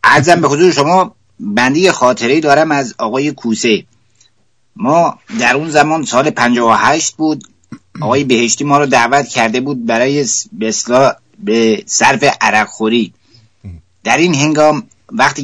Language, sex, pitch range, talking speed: English, male, 115-155 Hz, 135 wpm